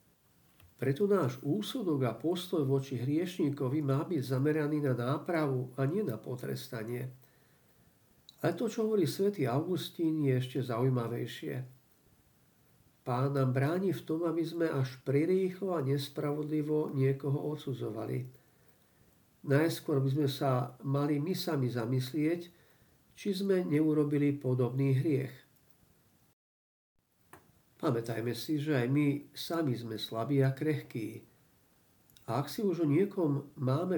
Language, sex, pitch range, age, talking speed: Slovak, male, 130-160 Hz, 50-69, 120 wpm